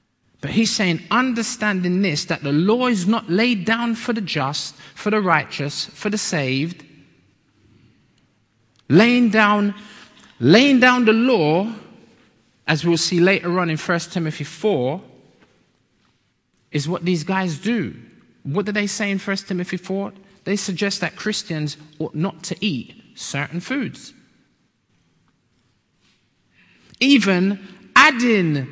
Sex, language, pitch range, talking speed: male, English, 145-210 Hz, 125 wpm